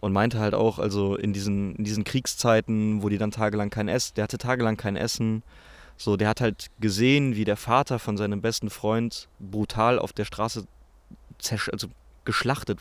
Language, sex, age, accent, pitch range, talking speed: German, male, 20-39, German, 105-125 Hz, 175 wpm